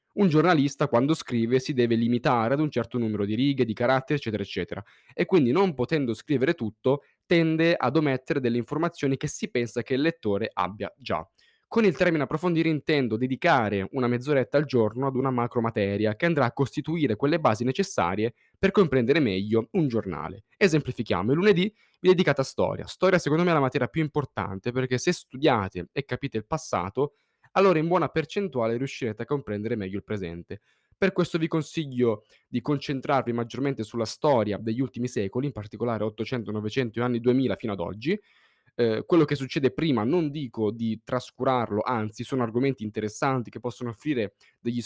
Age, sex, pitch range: 20-39, male, 110-155 Hz